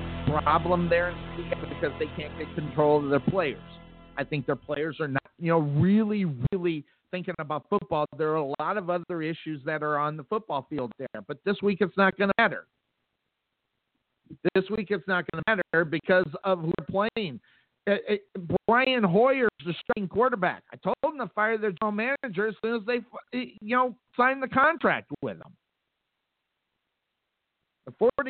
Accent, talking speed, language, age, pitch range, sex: American, 175 wpm, English, 50-69, 165-220 Hz, male